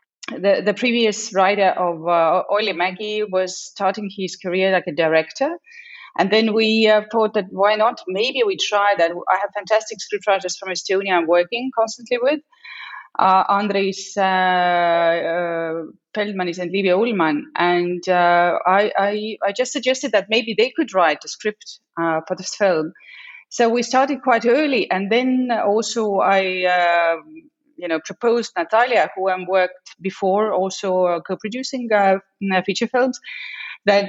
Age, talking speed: 30-49, 155 wpm